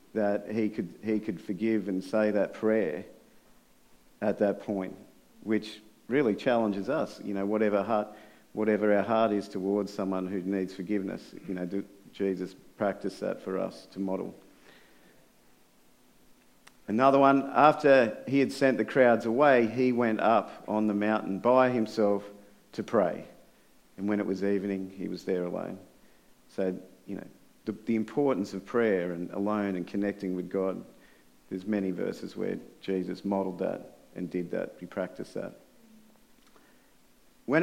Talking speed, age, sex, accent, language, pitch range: 155 wpm, 50-69, male, Australian, English, 100-120 Hz